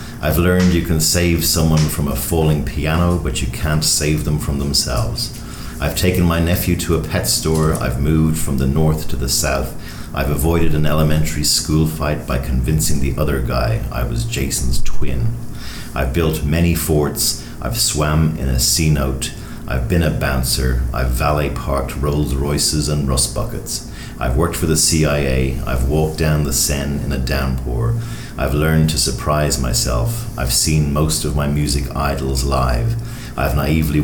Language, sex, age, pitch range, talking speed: English, male, 40-59, 65-80 Hz, 170 wpm